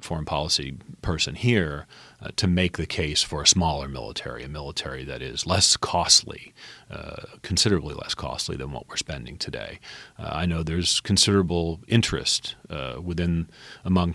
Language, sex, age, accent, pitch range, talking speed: English, male, 40-59, American, 75-95 Hz, 155 wpm